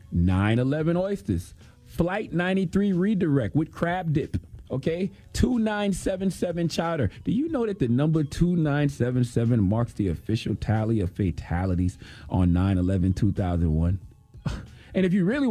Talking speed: 115 wpm